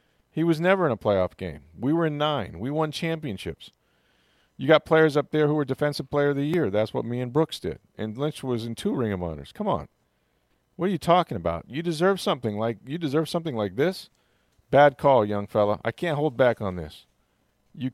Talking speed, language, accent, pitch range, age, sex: 225 wpm, English, American, 95-130 Hz, 40-59, male